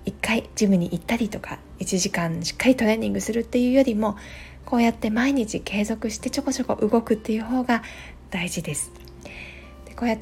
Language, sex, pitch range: Japanese, female, 175-225 Hz